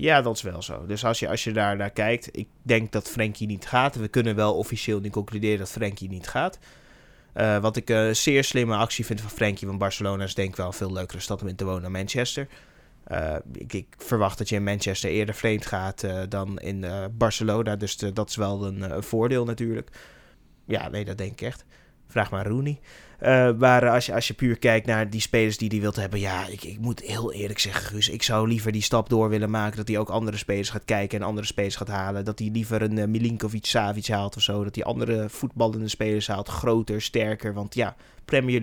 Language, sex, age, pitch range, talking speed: Dutch, male, 20-39, 100-115 Hz, 240 wpm